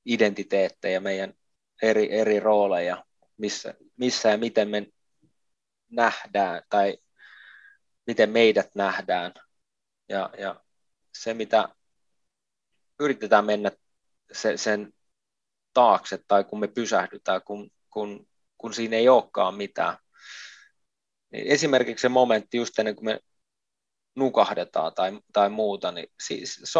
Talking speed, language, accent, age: 105 wpm, Finnish, native, 20-39